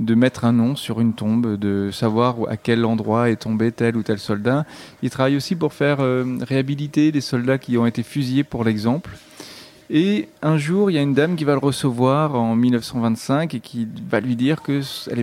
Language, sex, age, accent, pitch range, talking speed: French, male, 30-49, French, 115-140 Hz, 210 wpm